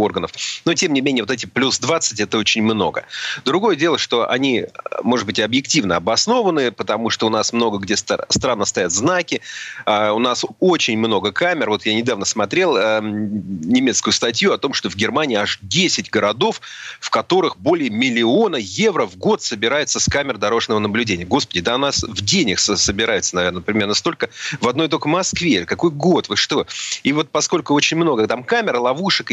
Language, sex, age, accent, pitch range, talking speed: Russian, male, 30-49, native, 105-155 Hz, 175 wpm